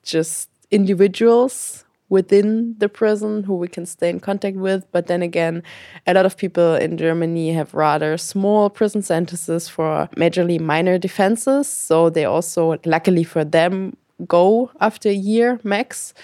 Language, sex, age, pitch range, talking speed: English, female, 20-39, 165-195 Hz, 150 wpm